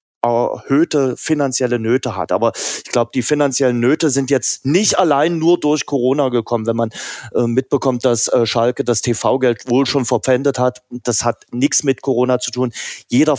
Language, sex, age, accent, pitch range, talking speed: German, male, 30-49, German, 125-145 Hz, 175 wpm